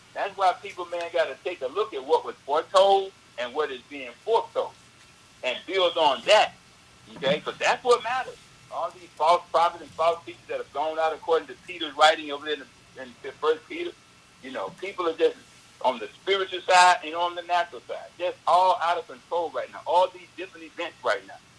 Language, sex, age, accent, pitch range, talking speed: English, male, 60-79, American, 175-240 Hz, 215 wpm